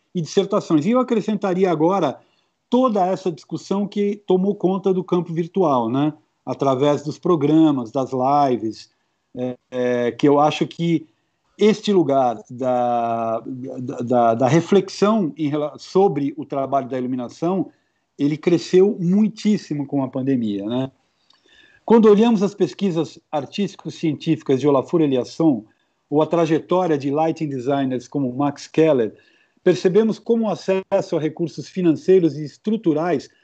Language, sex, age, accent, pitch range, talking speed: Portuguese, male, 50-69, Brazilian, 145-195 Hz, 130 wpm